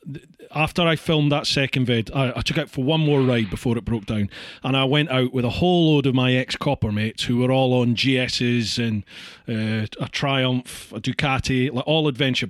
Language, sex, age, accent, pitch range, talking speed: English, male, 30-49, British, 120-155 Hz, 210 wpm